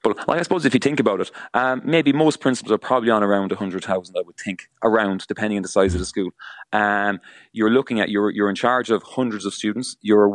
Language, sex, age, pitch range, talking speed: English, male, 30-49, 100-120 Hz, 240 wpm